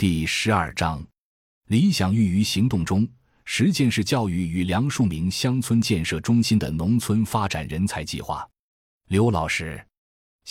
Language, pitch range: Chinese, 85-115 Hz